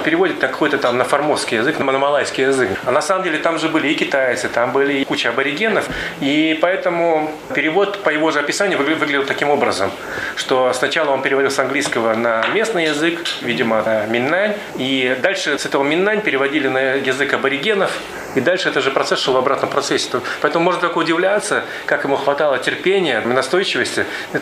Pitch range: 130-170 Hz